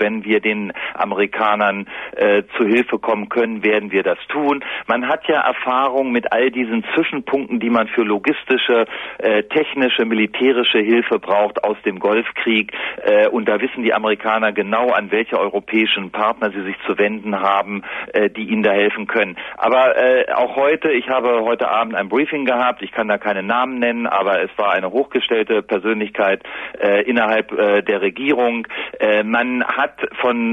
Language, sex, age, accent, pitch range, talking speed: German, male, 40-59, German, 105-125 Hz, 170 wpm